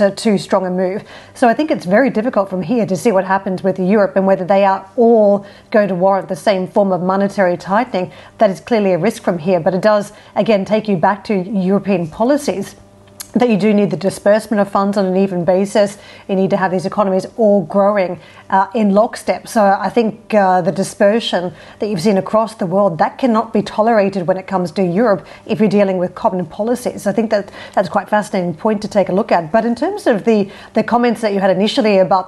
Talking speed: 230 wpm